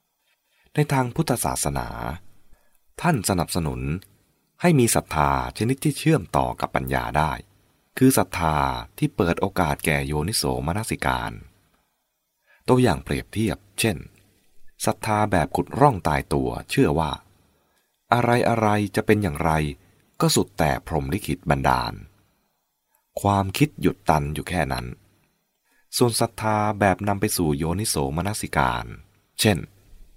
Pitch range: 75-110 Hz